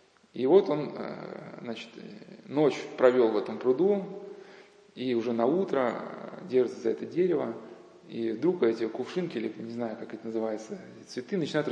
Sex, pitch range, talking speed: male, 120-190 Hz, 150 wpm